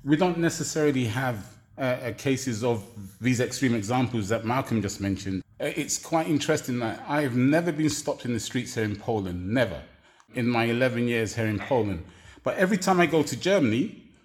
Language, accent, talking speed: English, British, 190 wpm